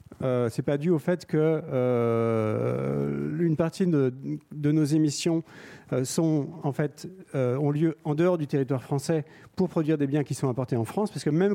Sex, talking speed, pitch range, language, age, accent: male, 190 wpm, 135-175 Hz, French, 40-59, French